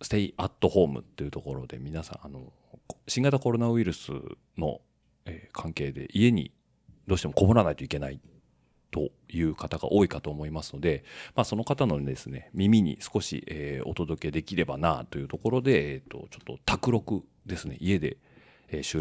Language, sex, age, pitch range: Japanese, male, 40-59, 70-95 Hz